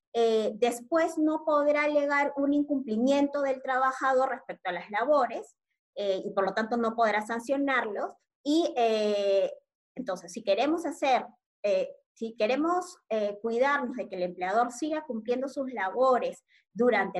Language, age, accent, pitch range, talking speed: Spanish, 20-39, American, 200-270 Hz, 145 wpm